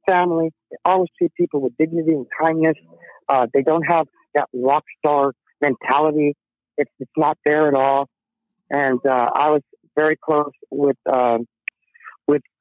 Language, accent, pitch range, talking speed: English, American, 130-160 Hz, 150 wpm